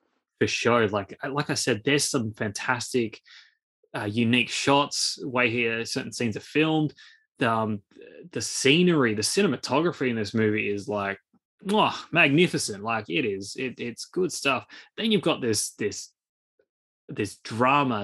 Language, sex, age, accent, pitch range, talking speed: English, male, 20-39, Australian, 110-145 Hz, 150 wpm